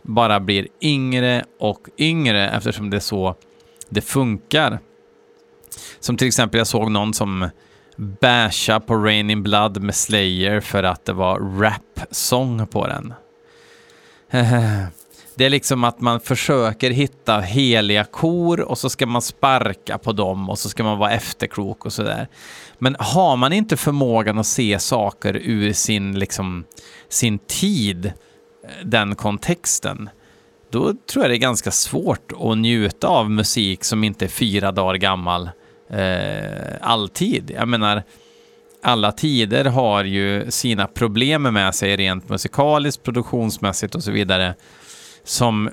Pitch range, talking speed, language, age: 100-130 Hz, 140 wpm, Swedish, 30-49